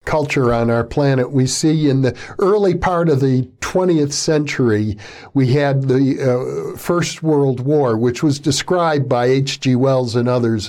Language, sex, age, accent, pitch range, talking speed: English, male, 60-79, American, 130-165 Hz, 165 wpm